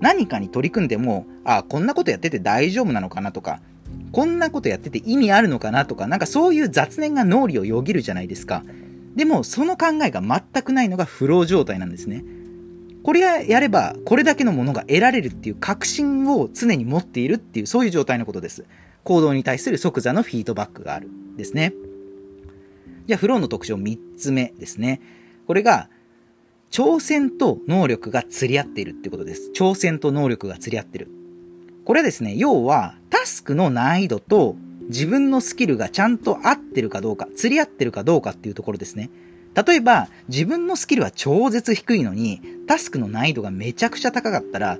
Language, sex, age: Japanese, male, 40-59